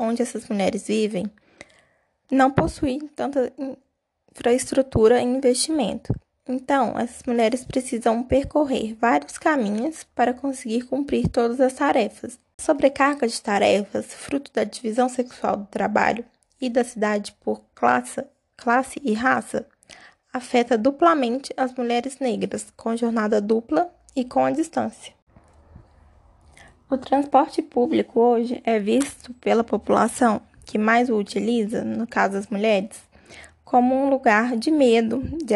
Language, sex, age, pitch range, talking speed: Portuguese, female, 10-29, 220-265 Hz, 125 wpm